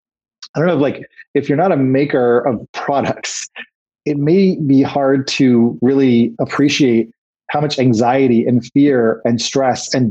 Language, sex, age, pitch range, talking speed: English, male, 30-49, 120-145 Hz, 155 wpm